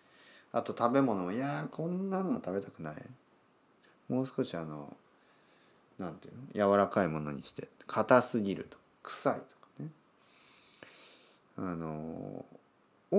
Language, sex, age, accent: Japanese, male, 40-59, native